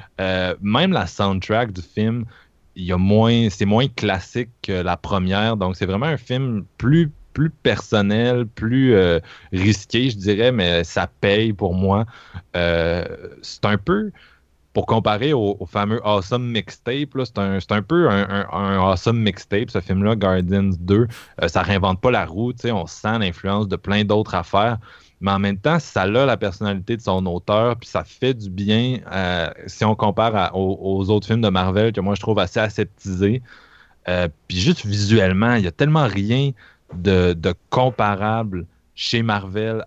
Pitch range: 95-115 Hz